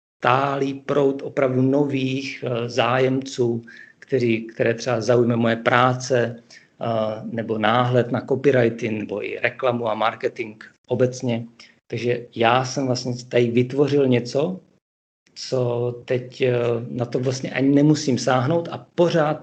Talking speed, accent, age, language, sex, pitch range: 115 wpm, native, 50-69, Czech, male, 115-135 Hz